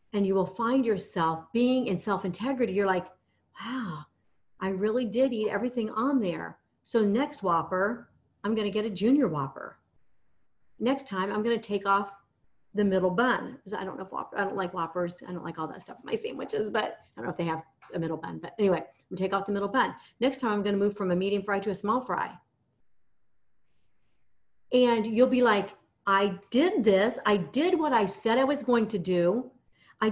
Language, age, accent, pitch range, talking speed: English, 50-69, American, 180-240 Hz, 205 wpm